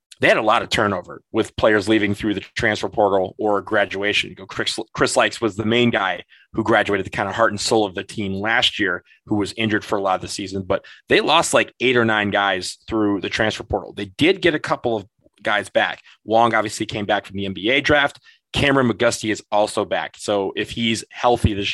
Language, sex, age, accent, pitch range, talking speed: English, male, 30-49, American, 100-115 Hz, 225 wpm